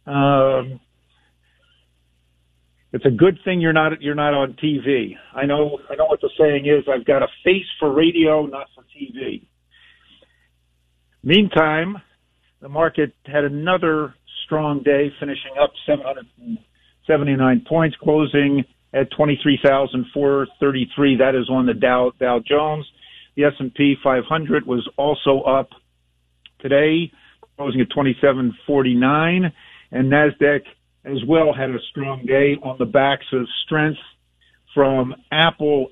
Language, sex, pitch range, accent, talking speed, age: English, male, 125-150 Hz, American, 125 wpm, 50-69